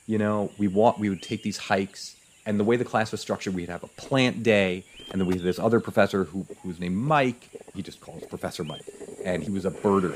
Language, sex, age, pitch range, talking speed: English, male, 30-49, 95-125 Hz, 255 wpm